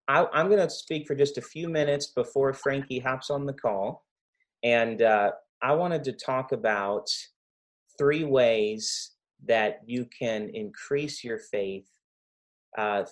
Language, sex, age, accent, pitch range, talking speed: English, male, 30-49, American, 105-145 Hz, 140 wpm